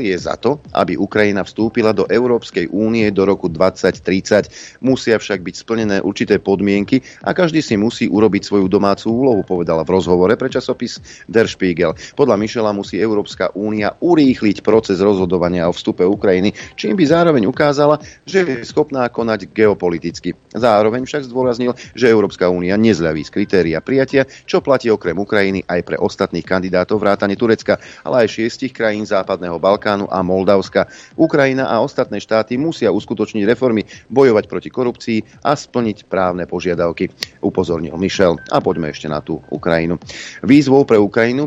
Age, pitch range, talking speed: 30-49, 95-125 Hz, 155 wpm